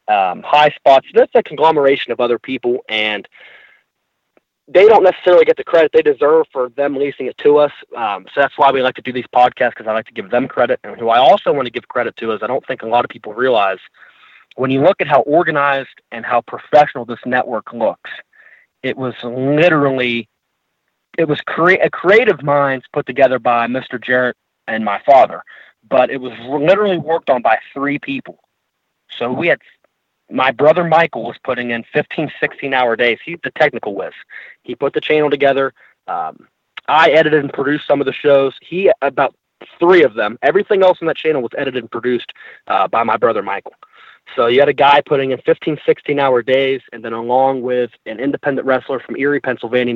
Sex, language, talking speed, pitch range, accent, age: male, English, 200 wpm, 125-150 Hz, American, 30-49